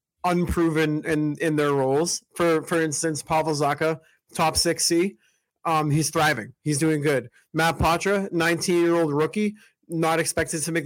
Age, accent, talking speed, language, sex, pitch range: 30-49, American, 160 wpm, English, male, 145-165 Hz